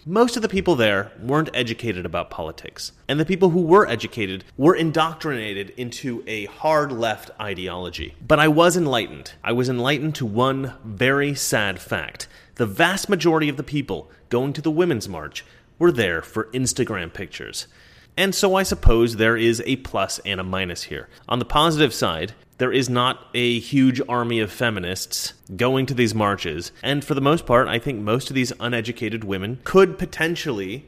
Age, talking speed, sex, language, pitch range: 30-49, 175 wpm, male, English, 115-160 Hz